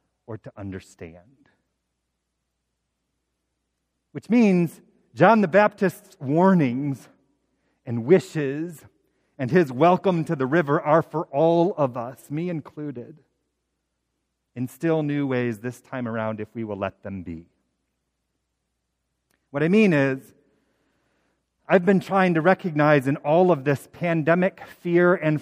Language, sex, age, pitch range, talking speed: English, male, 40-59, 120-185 Hz, 125 wpm